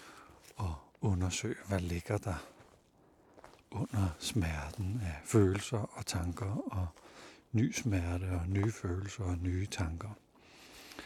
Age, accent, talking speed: 60-79, native, 110 wpm